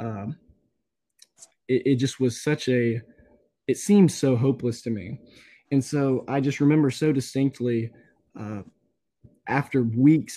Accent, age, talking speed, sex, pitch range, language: American, 20-39, 135 wpm, male, 120-135 Hz, English